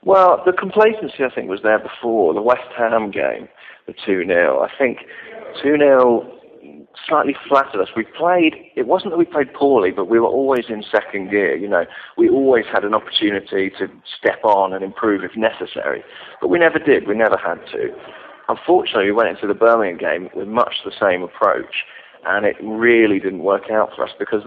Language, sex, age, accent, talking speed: English, male, 40-59, British, 190 wpm